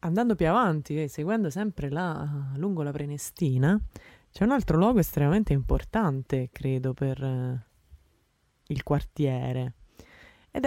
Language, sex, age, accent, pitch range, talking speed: Italian, female, 20-39, native, 130-180 Hz, 120 wpm